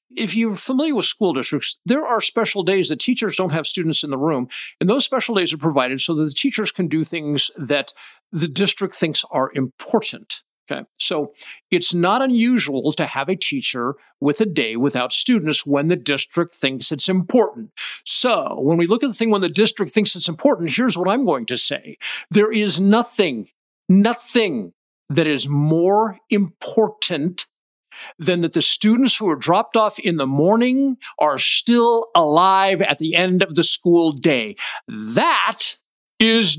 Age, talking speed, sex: 50-69, 175 wpm, male